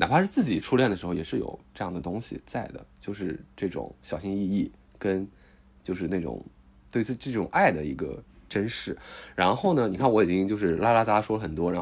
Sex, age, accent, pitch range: male, 20-39, native, 90-130 Hz